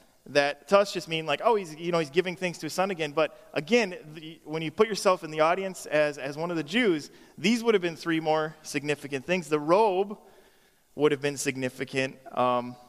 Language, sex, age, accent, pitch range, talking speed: English, male, 20-39, American, 130-160 Hz, 225 wpm